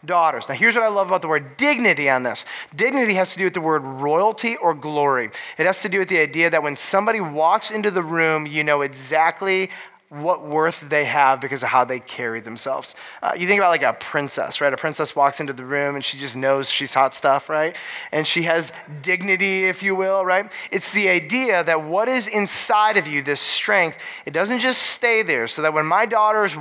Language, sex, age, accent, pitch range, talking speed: English, male, 30-49, American, 150-195 Hz, 225 wpm